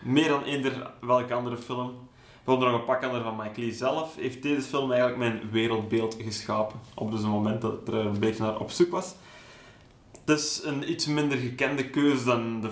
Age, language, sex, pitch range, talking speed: 20-39, Dutch, male, 115-135 Hz, 205 wpm